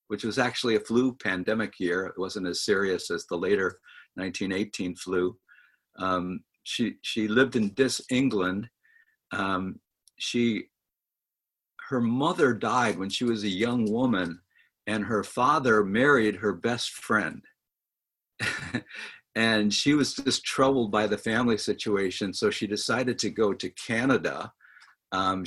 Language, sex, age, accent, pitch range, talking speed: English, male, 50-69, American, 105-125 Hz, 135 wpm